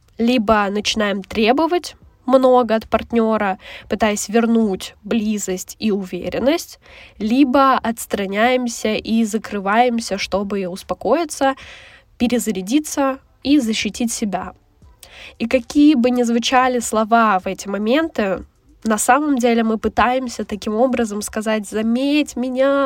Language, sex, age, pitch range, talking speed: Russian, female, 10-29, 215-260 Hz, 105 wpm